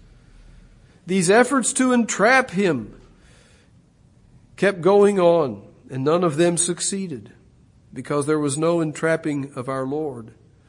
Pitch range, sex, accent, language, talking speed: 140-175 Hz, male, American, English, 120 wpm